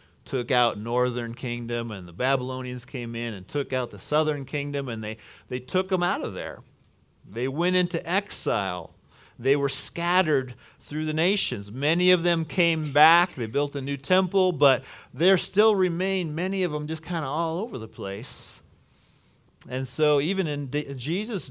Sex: male